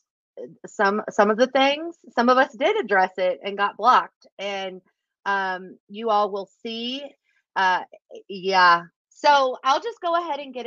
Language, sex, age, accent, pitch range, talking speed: English, female, 30-49, American, 185-270 Hz, 165 wpm